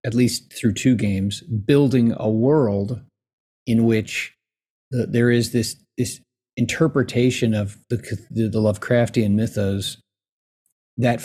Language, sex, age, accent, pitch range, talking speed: English, male, 40-59, American, 105-125 Hz, 115 wpm